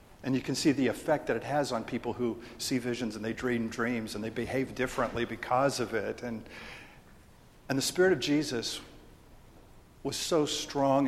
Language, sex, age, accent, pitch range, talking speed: English, male, 50-69, American, 115-140 Hz, 185 wpm